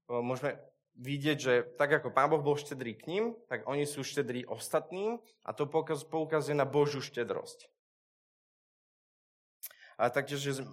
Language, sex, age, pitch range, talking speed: Slovak, male, 20-39, 120-155 Hz, 135 wpm